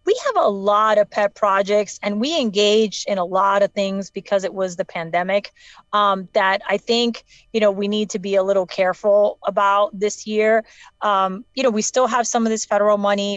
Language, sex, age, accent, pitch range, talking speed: English, female, 30-49, American, 195-220 Hz, 210 wpm